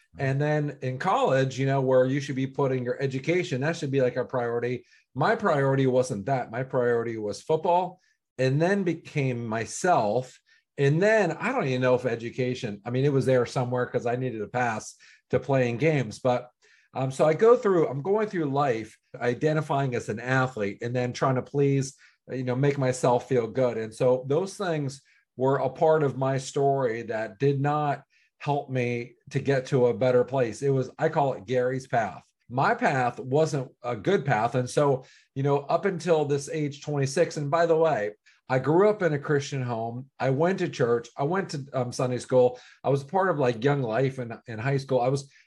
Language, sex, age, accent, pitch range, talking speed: English, male, 40-59, American, 125-150 Hz, 205 wpm